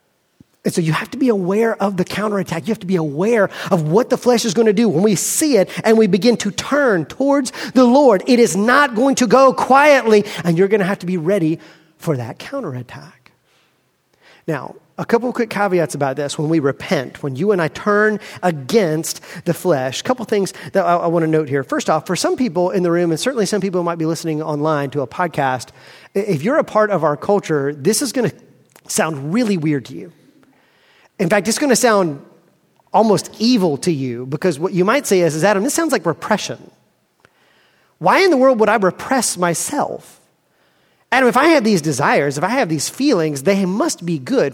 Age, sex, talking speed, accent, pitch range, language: 40-59, male, 220 wpm, American, 165-240 Hz, English